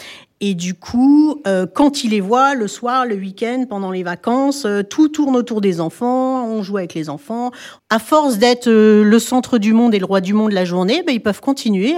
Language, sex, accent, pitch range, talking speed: French, female, French, 180-240 Hz, 225 wpm